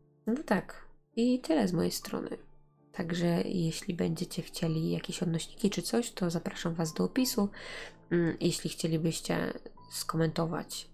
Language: Polish